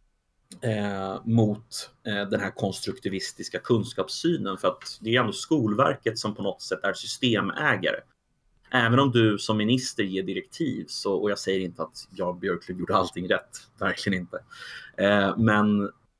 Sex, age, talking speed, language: male, 30-49, 135 wpm, English